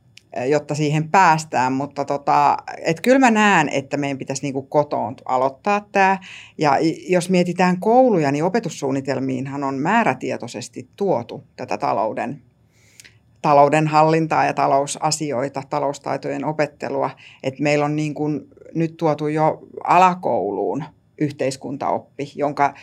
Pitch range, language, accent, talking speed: 140-180 Hz, Finnish, native, 110 wpm